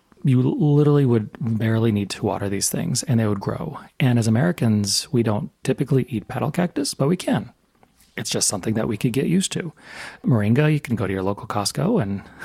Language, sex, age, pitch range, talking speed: English, male, 30-49, 105-130 Hz, 205 wpm